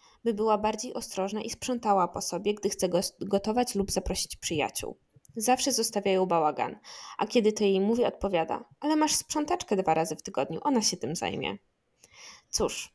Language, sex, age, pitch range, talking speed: Polish, female, 20-39, 190-230 Hz, 160 wpm